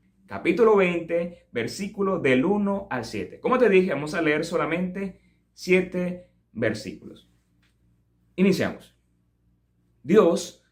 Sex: male